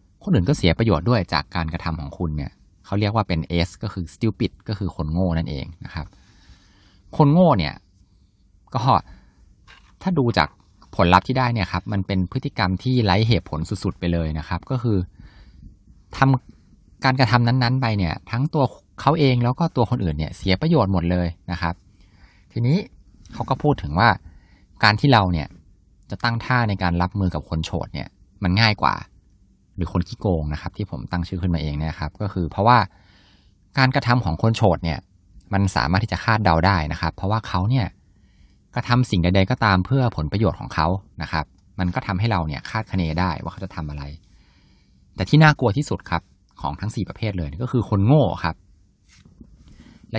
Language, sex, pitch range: Thai, male, 85-115 Hz